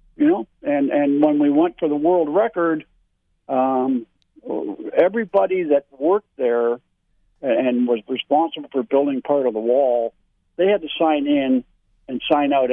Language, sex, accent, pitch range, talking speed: English, male, American, 125-150 Hz, 145 wpm